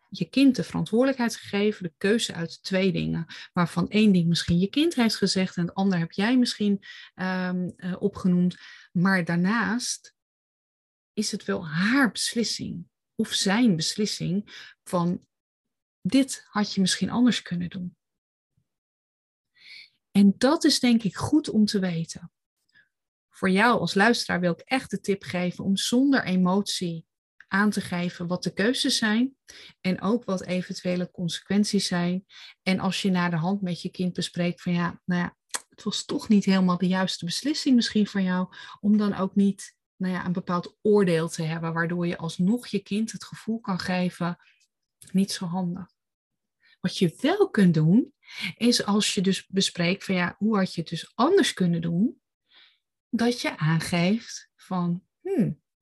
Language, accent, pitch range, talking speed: Dutch, Dutch, 175-215 Hz, 160 wpm